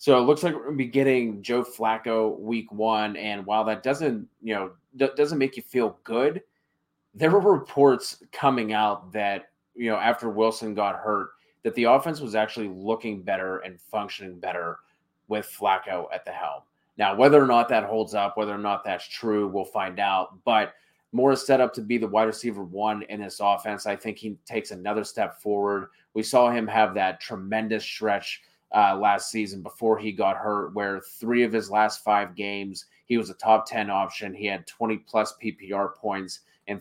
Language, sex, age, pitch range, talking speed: English, male, 20-39, 100-115 Hz, 195 wpm